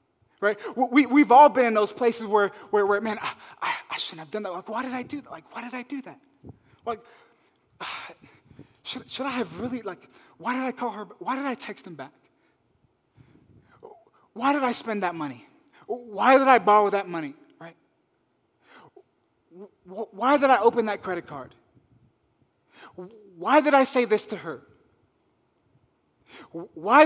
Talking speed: 170 wpm